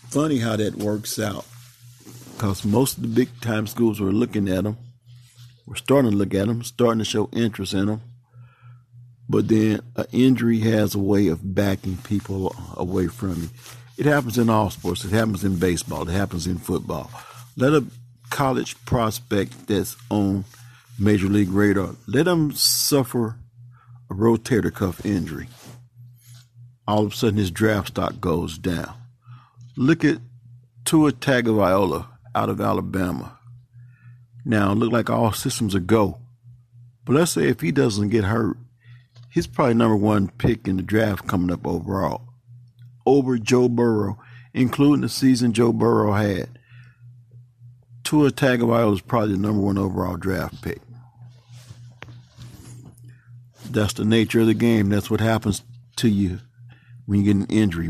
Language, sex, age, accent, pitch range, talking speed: English, male, 50-69, American, 105-120 Hz, 150 wpm